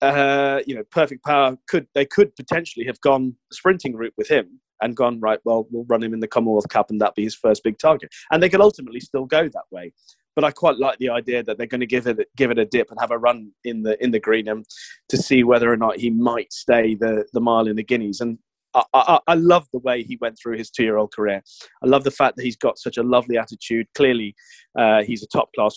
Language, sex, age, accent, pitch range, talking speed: English, male, 30-49, British, 110-130 Hz, 255 wpm